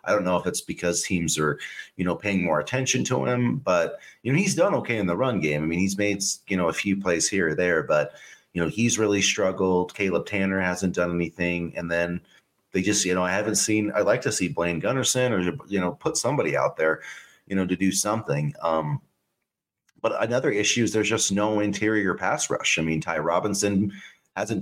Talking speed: 220 wpm